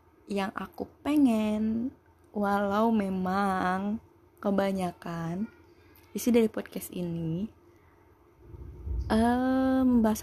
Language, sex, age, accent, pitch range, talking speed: Indonesian, female, 20-39, native, 165-195 Hz, 65 wpm